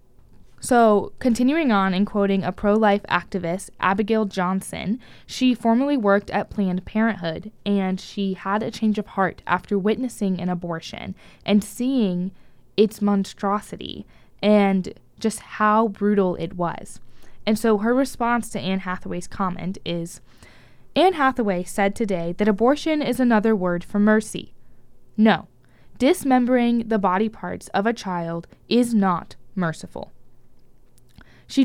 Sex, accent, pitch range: female, American, 180-225 Hz